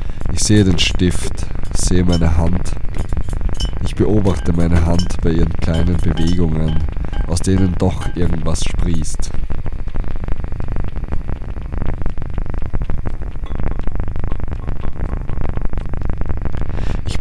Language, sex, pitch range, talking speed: German, male, 80-95 Hz, 75 wpm